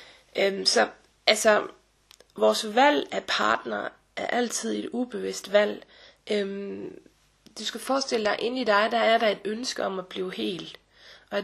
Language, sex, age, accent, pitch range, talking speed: Danish, female, 30-49, native, 190-230 Hz, 150 wpm